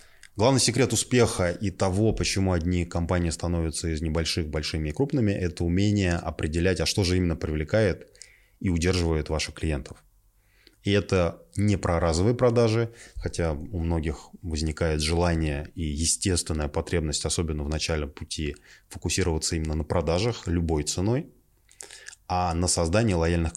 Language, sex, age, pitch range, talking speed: Russian, male, 20-39, 80-95 Hz, 135 wpm